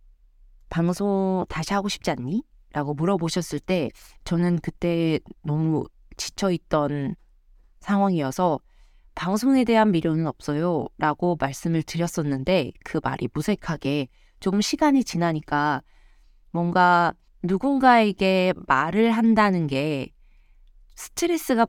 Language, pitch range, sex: Korean, 150-205 Hz, female